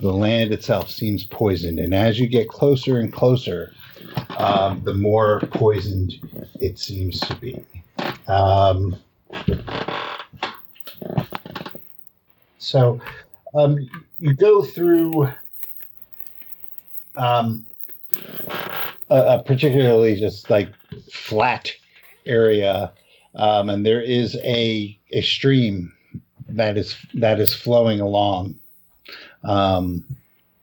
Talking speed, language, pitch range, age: 95 wpm, English, 100-135 Hz, 50-69